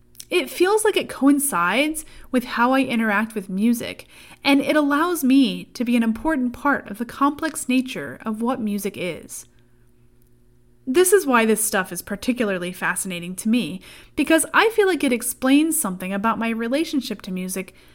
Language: English